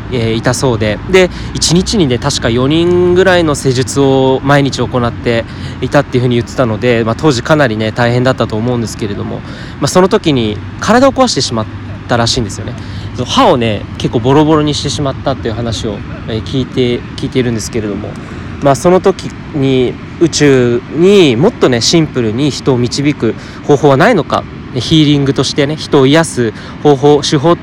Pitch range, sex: 110-155 Hz, male